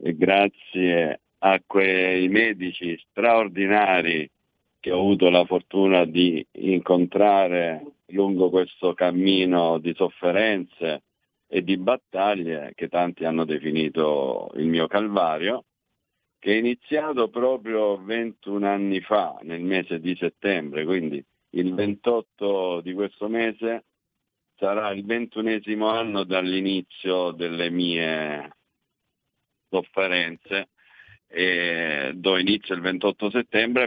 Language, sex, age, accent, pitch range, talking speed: Italian, male, 50-69, native, 85-105 Hz, 105 wpm